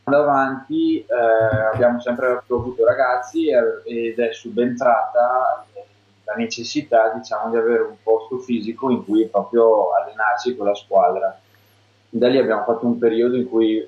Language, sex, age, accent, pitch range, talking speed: Italian, male, 20-39, native, 100-125 Hz, 145 wpm